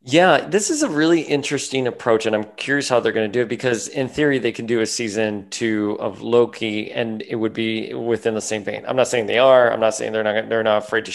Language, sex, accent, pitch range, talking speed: English, male, American, 105-130 Hz, 265 wpm